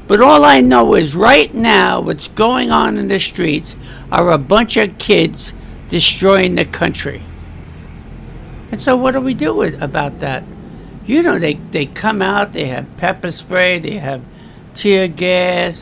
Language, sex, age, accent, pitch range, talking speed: English, male, 60-79, American, 150-215 Hz, 165 wpm